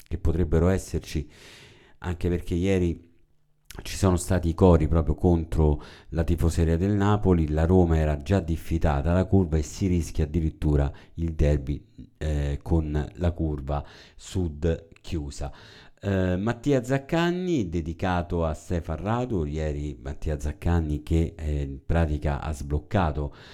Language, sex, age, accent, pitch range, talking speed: Italian, male, 50-69, native, 75-95 Hz, 135 wpm